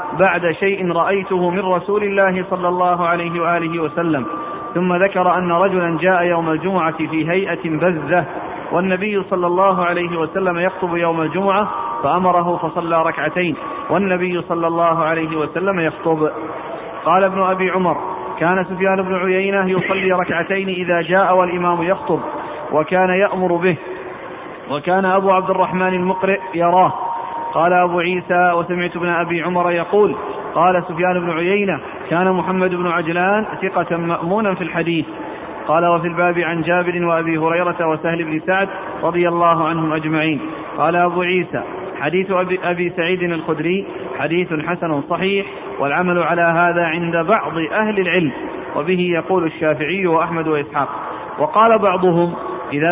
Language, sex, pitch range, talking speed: Arabic, male, 170-185 Hz, 135 wpm